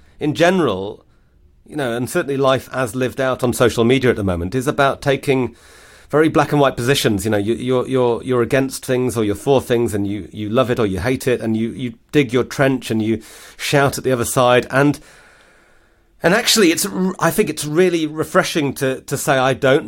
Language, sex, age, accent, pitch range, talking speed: English, male, 40-59, British, 110-140 Hz, 215 wpm